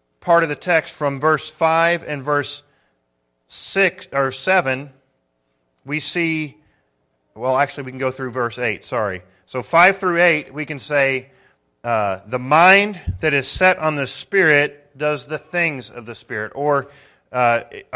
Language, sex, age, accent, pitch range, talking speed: English, male, 40-59, American, 130-175 Hz, 155 wpm